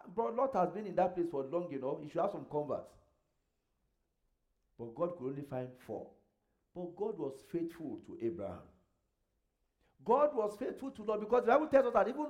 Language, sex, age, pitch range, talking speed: English, male, 50-69, 165-275 Hz, 185 wpm